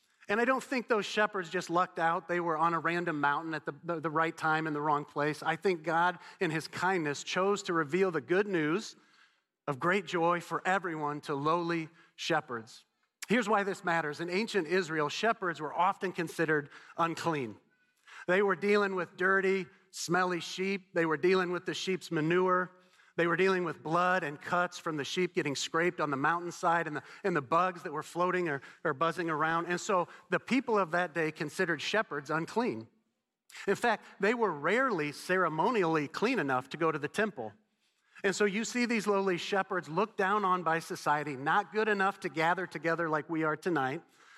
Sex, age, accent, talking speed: male, 40-59, American, 195 wpm